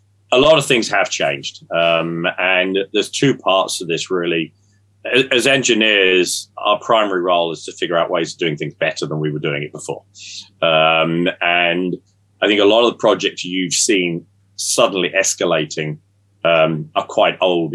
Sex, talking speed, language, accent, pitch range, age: male, 170 wpm, English, British, 85-100 Hz, 30-49